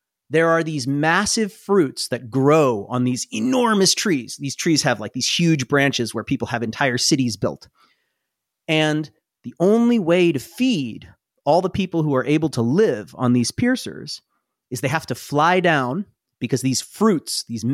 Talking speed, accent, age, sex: 175 wpm, American, 30-49, male